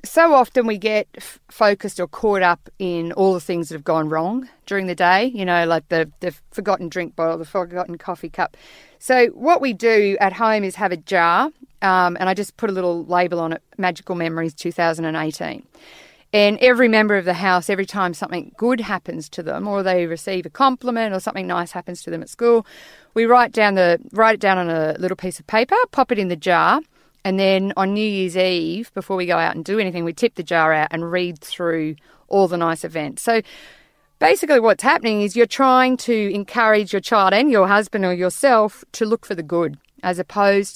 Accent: Australian